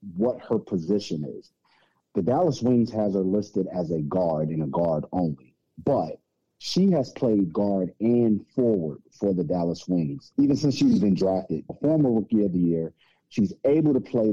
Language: English